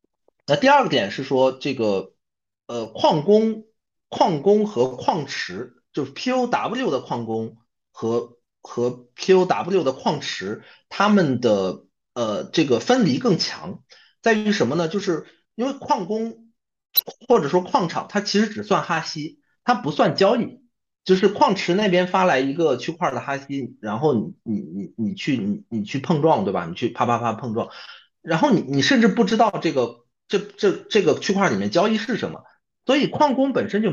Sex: male